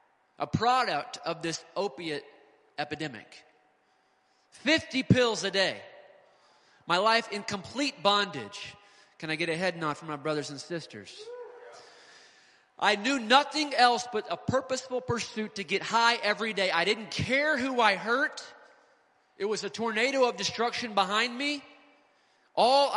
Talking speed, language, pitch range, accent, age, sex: 140 wpm, English, 180-255 Hz, American, 30-49, male